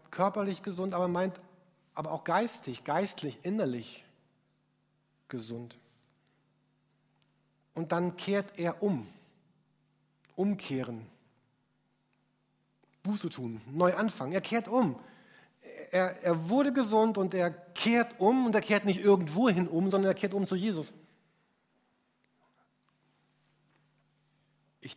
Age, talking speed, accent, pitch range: 50-69, 110 wpm, German, 150-190 Hz